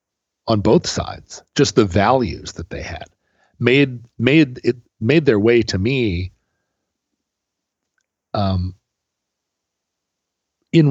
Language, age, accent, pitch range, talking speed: English, 40-59, American, 95-120 Hz, 105 wpm